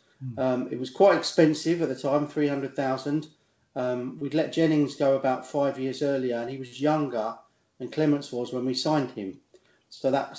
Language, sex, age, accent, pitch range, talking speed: English, male, 40-59, British, 130-155 Hz, 180 wpm